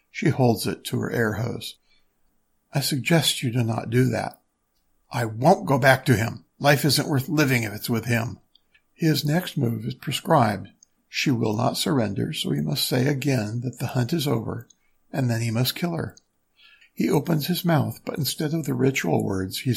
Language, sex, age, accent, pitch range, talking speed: English, male, 60-79, American, 120-145 Hz, 195 wpm